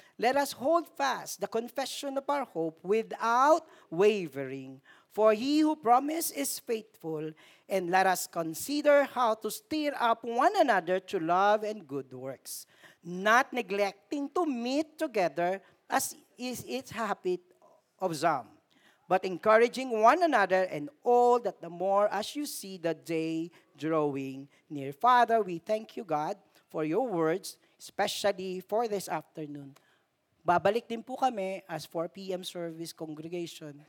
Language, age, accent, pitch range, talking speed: Filipino, 40-59, native, 160-240 Hz, 140 wpm